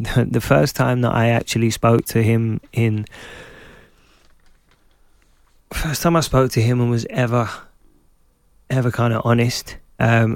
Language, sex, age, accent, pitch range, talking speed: English, male, 20-39, British, 105-115 Hz, 140 wpm